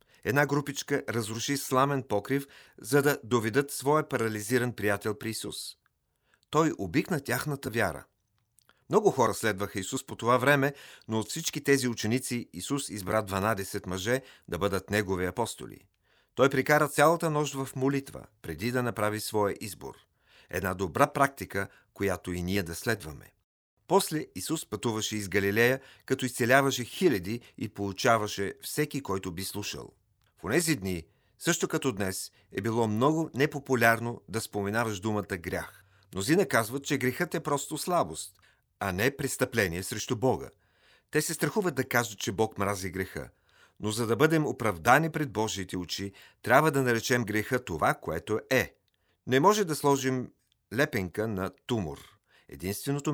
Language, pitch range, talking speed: Bulgarian, 100-135 Hz, 145 wpm